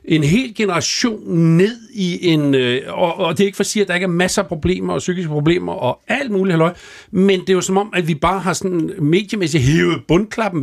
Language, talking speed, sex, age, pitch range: Danish, 235 wpm, male, 60-79, 150-200 Hz